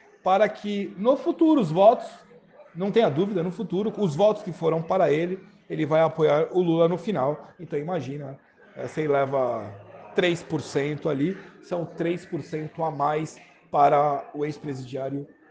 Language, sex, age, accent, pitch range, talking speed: Portuguese, male, 40-59, Brazilian, 170-215 Hz, 145 wpm